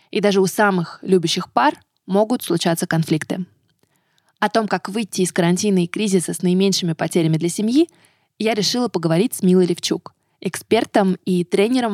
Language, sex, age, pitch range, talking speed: Russian, female, 20-39, 175-215 Hz, 155 wpm